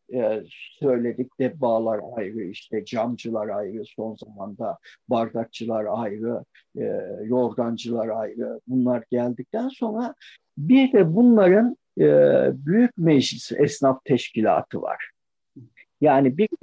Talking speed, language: 90 wpm, Turkish